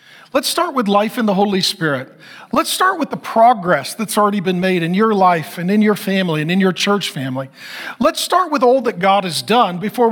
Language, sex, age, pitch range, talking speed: English, male, 40-59, 185-260 Hz, 225 wpm